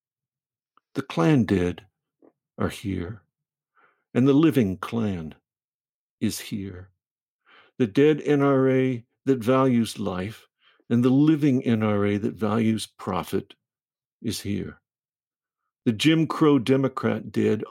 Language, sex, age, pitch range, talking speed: English, male, 60-79, 105-135 Hz, 105 wpm